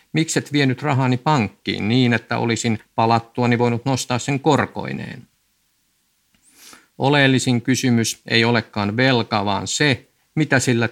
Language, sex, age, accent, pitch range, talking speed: Finnish, male, 50-69, native, 110-135 Hz, 120 wpm